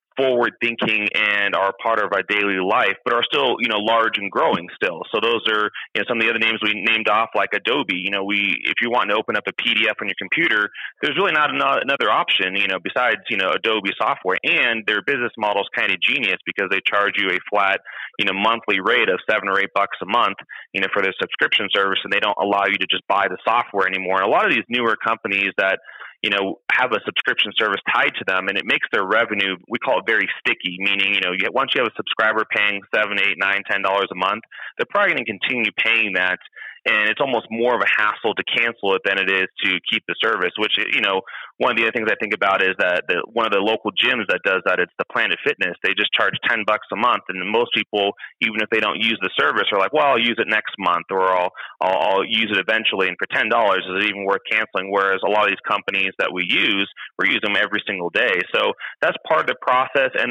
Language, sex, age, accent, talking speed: English, male, 30-49, American, 250 wpm